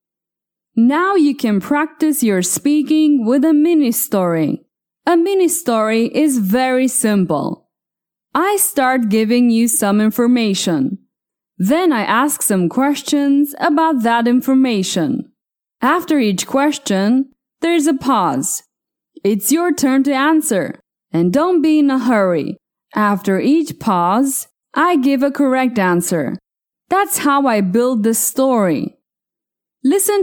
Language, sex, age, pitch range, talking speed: English, female, 20-39, 210-295 Hz, 120 wpm